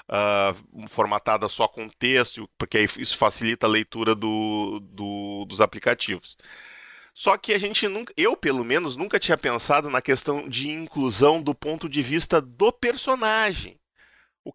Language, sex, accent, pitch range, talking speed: Portuguese, male, Brazilian, 120-170 Hz, 150 wpm